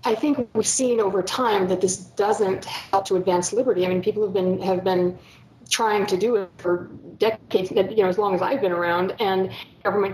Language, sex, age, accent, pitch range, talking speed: English, female, 30-49, American, 185-220 Hz, 215 wpm